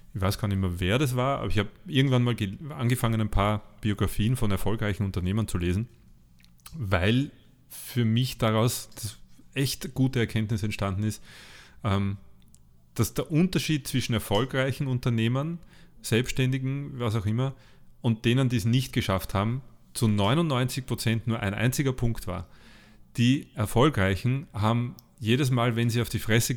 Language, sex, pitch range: German, male, 105-130 Hz